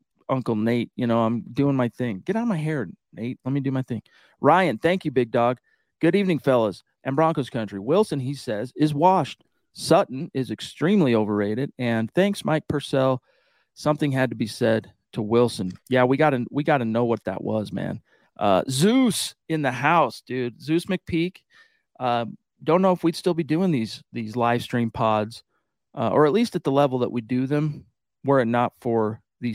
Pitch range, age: 115-155 Hz, 40-59